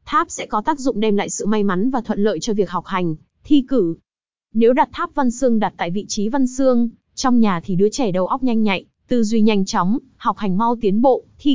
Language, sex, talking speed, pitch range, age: Vietnamese, female, 255 wpm, 200-255 Hz, 20-39